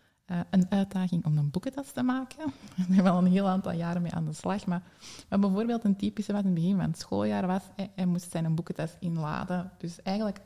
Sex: female